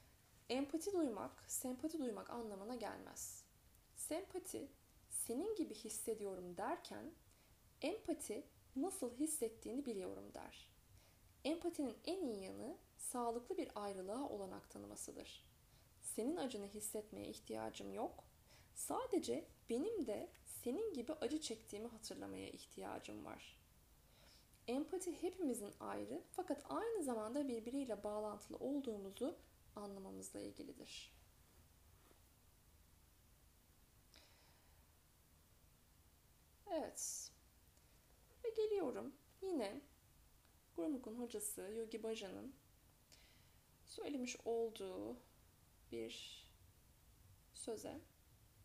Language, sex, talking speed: Turkish, female, 80 wpm